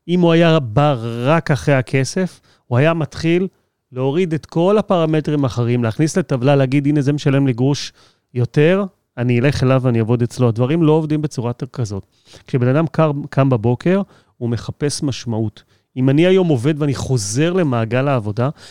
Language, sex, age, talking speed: Hebrew, male, 30-49, 165 wpm